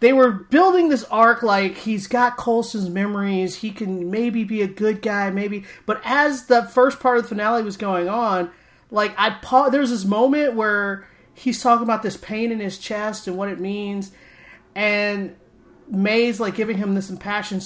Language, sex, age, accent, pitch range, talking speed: English, male, 30-49, American, 180-235 Hz, 185 wpm